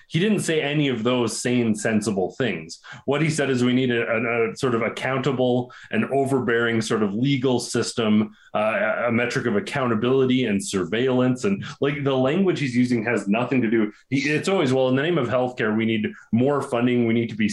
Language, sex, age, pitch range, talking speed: English, male, 30-49, 110-130 Hz, 205 wpm